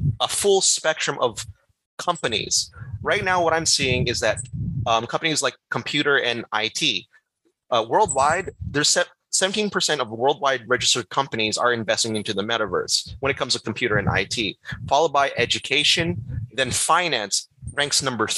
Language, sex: Filipino, male